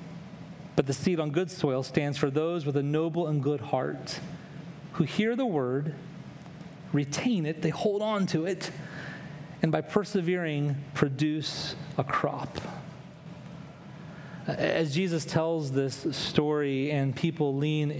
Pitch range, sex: 155-205 Hz, male